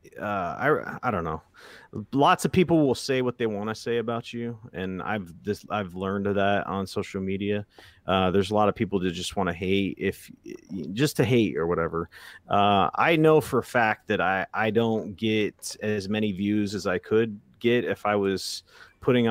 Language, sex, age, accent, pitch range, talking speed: English, male, 30-49, American, 100-120 Hz, 205 wpm